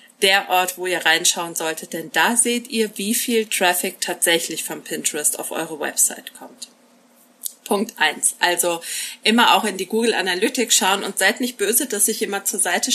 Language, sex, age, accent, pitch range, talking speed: German, female, 30-49, German, 195-250 Hz, 180 wpm